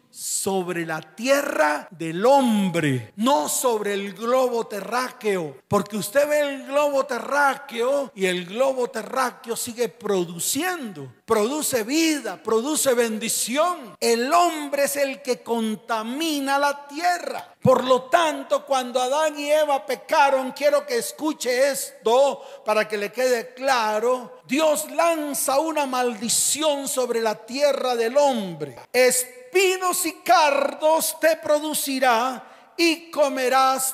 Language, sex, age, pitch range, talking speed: Spanish, male, 40-59, 220-285 Hz, 120 wpm